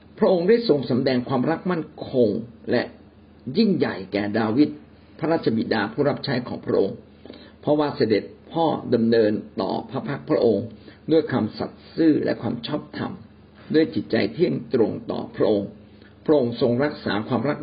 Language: Thai